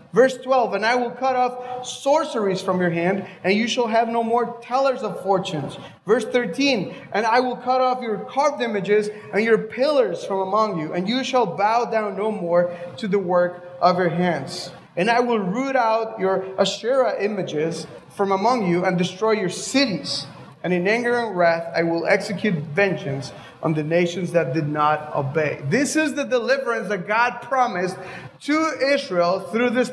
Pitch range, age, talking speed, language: 175-235 Hz, 30-49, 180 wpm, English